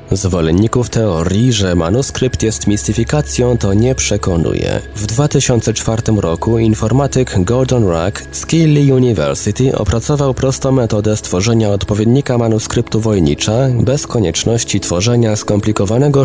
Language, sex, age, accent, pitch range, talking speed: Polish, male, 20-39, native, 105-125 Hz, 105 wpm